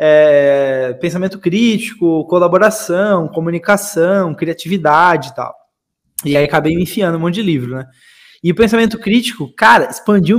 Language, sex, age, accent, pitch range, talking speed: Portuguese, male, 20-39, Brazilian, 160-215 Hz, 140 wpm